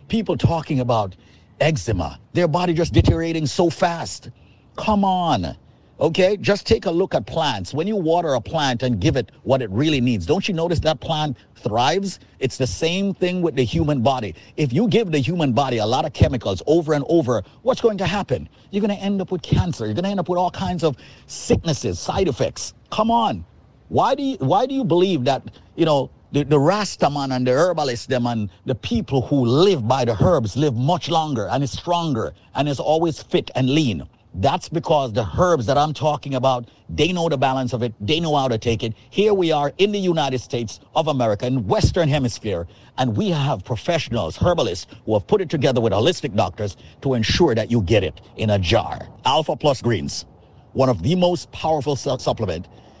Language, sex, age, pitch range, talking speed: English, male, 50-69, 120-170 Hz, 205 wpm